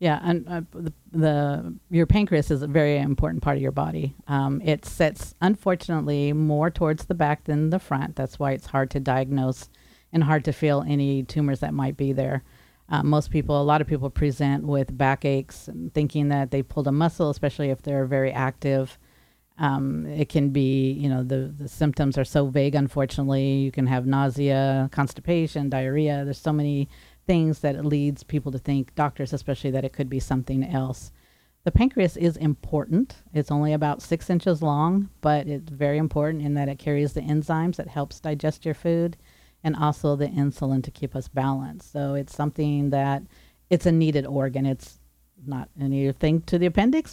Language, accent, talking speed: English, American, 185 wpm